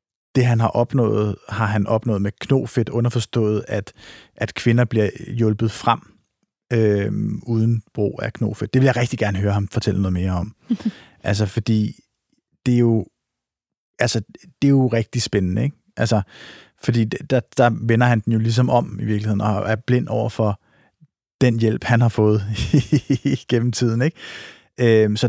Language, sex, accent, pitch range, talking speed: Danish, male, native, 110-140 Hz, 170 wpm